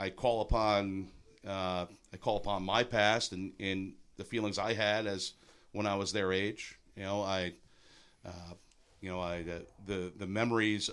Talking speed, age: 170 wpm, 50-69